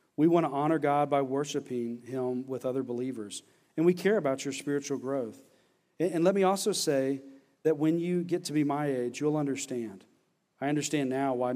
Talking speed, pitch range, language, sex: 190 wpm, 125-155 Hz, English, male